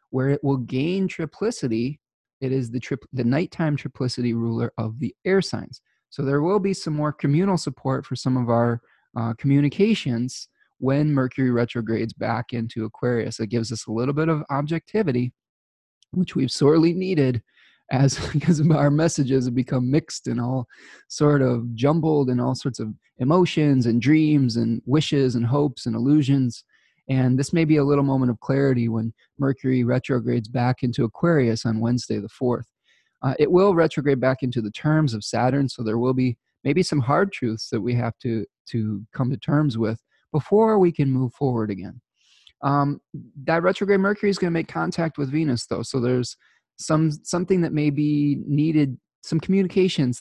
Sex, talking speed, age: male, 175 wpm, 20-39